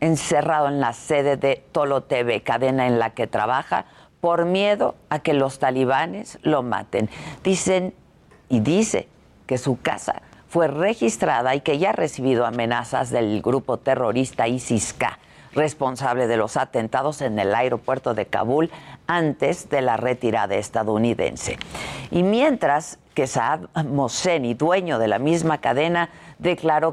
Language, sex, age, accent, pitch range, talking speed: Spanish, female, 50-69, Mexican, 120-170 Hz, 140 wpm